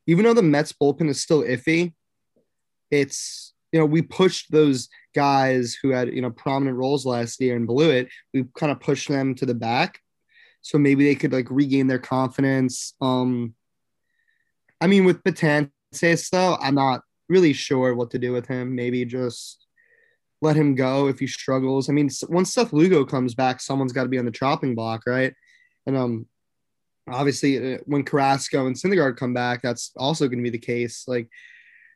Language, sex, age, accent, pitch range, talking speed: English, male, 20-39, American, 130-155 Hz, 185 wpm